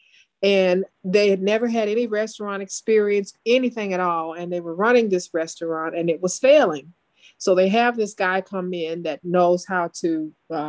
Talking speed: 185 wpm